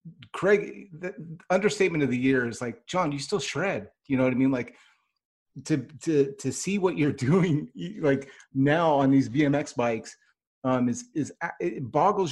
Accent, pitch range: American, 125-155 Hz